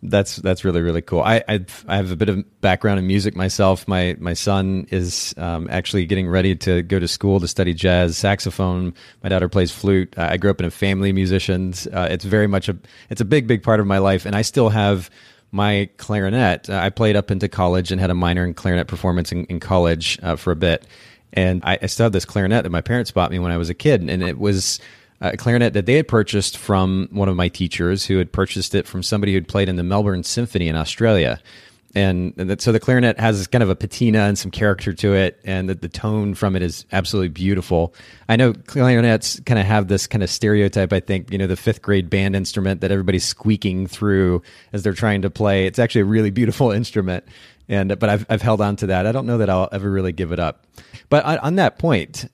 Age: 30-49